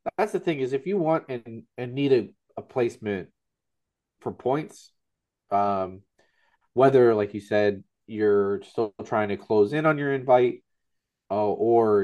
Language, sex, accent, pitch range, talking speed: English, male, American, 105-135 Hz, 155 wpm